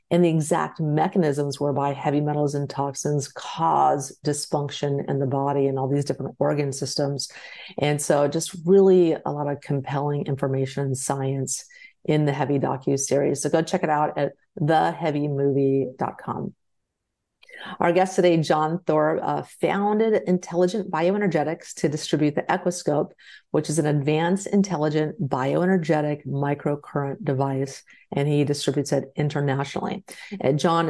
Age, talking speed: 50-69, 135 wpm